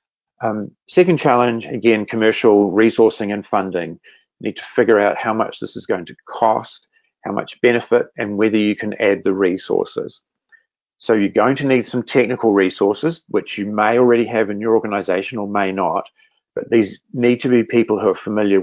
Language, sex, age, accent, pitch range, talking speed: English, male, 40-59, Australian, 105-150 Hz, 185 wpm